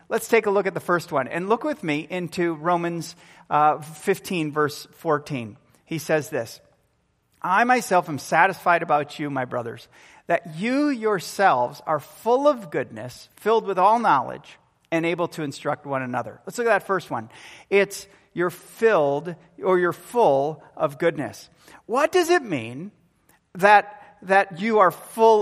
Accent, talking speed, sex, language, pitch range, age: American, 165 wpm, male, English, 150-210 Hz, 40-59